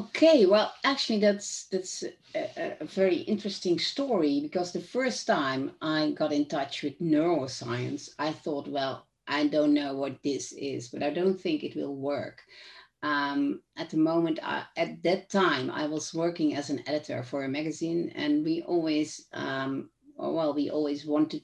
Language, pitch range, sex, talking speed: English, 150-205 Hz, female, 170 wpm